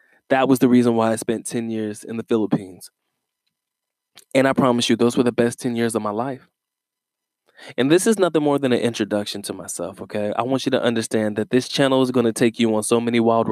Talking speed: 235 wpm